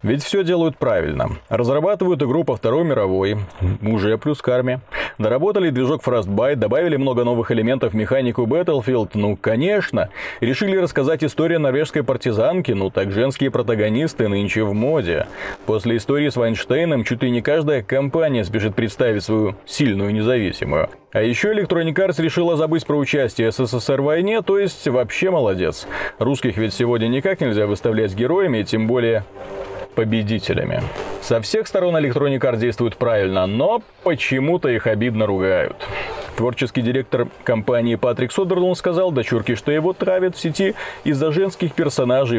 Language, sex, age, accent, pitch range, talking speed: Russian, male, 30-49, native, 110-160 Hz, 145 wpm